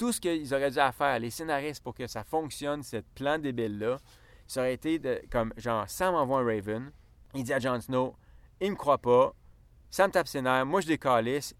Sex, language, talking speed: male, French, 215 wpm